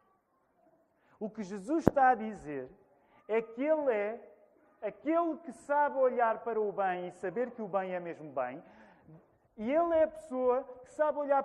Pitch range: 150-235 Hz